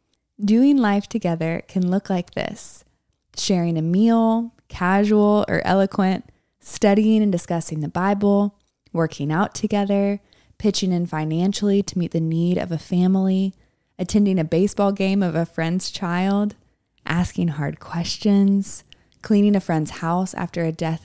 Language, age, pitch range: English, 20-39, 175-205 Hz